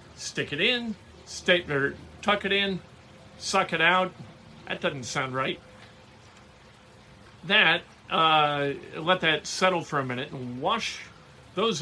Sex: male